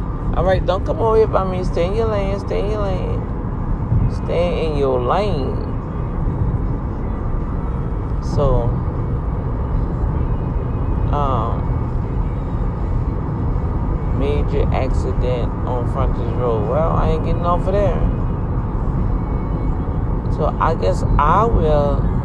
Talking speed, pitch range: 100 wpm, 110-140 Hz